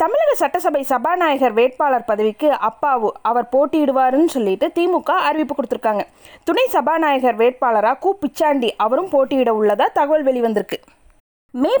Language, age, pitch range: Tamil, 20-39, 235-315 Hz